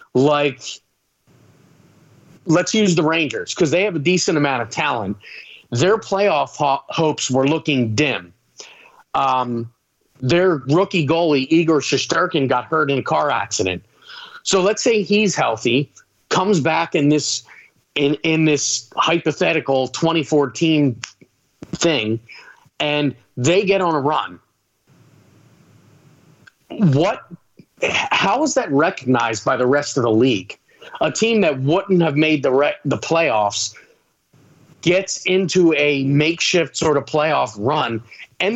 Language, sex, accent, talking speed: English, male, American, 130 wpm